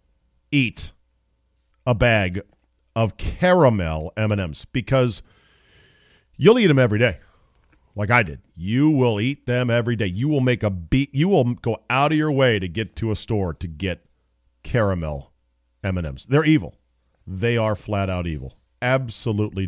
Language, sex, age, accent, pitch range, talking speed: English, male, 50-69, American, 90-130 Hz, 150 wpm